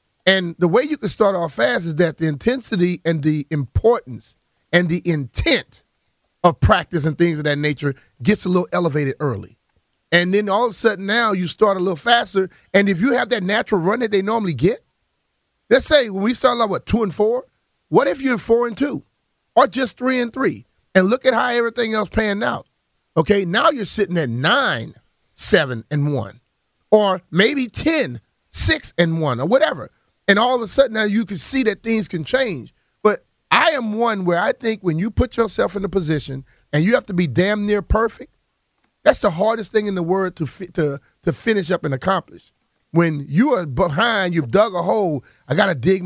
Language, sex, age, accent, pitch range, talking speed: English, male, 40-59, American, 165-225 Hz, 210 wpm